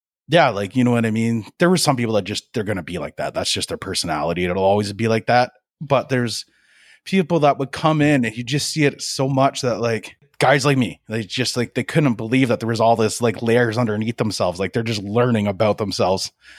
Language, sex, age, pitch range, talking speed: English, male, 30-49, 110-140 Hz, 245 wpm